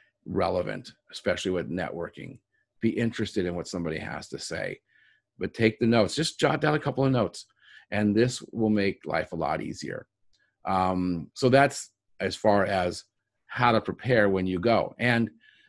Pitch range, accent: 100-120 Hz, American